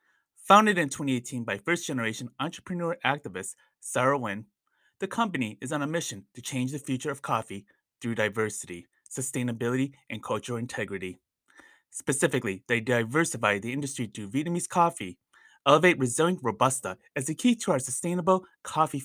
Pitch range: 120-165 Hz